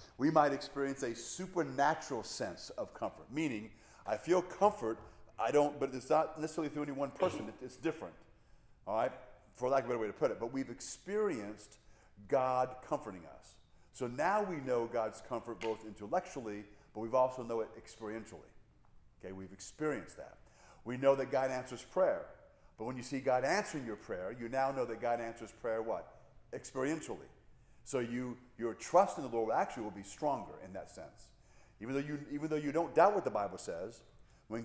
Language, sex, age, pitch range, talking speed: English, male, 50-69, 110-150 Hz, 190 wpm